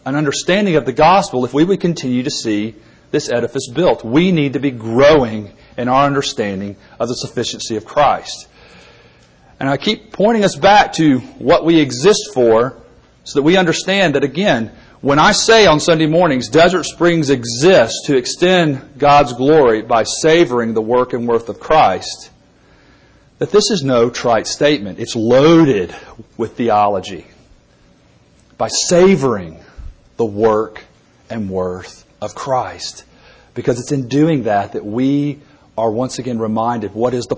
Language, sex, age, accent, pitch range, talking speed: English, male, 40-59, American, 115-155 Hz, 155 wpm